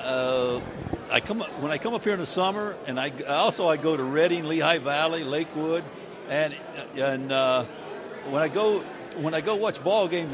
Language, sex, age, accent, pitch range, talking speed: English, male, 60-79, American, 145-175 Hz, 195 wpm